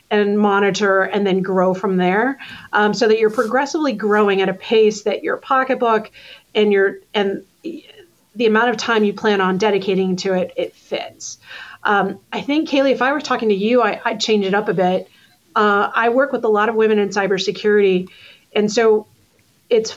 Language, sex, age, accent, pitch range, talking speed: English, female, 40-59, American, 200-235 Hz, 190 wpm